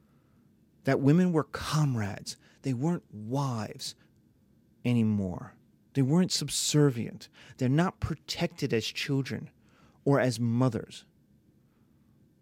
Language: English